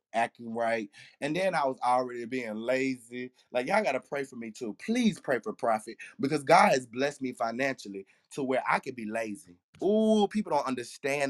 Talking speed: 190 wpm